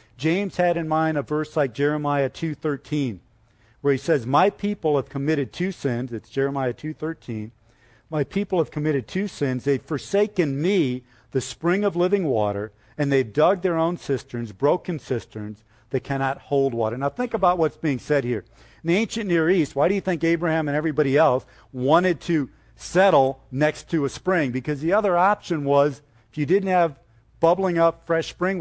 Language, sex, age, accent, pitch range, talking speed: English, male, 50-69, American, 130-175 Hz, 185 wpm